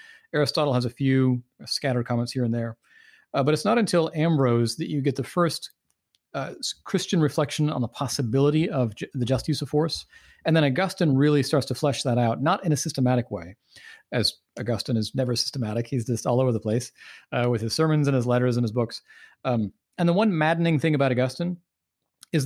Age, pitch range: 40-59, 120-150 Hz